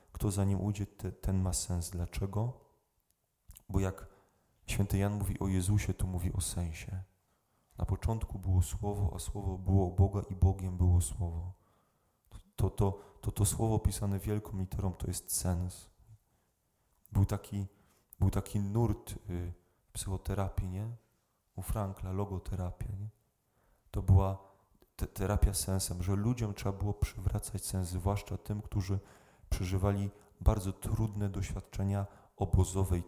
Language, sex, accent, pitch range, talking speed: Polish, male, native, 95-105 Hz, 140 wpm